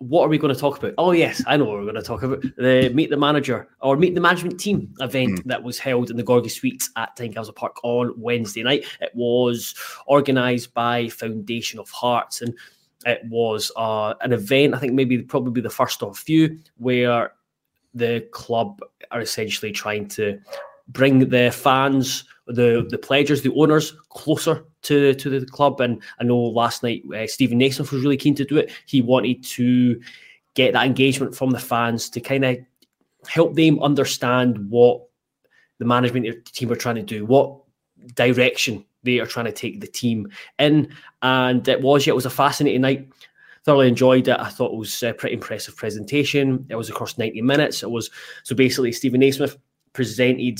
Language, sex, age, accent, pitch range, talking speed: English, male, 20-39, British, 120-140 Hz, 190 wpm